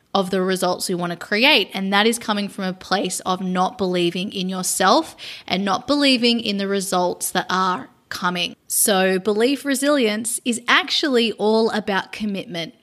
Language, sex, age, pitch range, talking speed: English, female, 20-39, 200-240 Hz, 170 wpm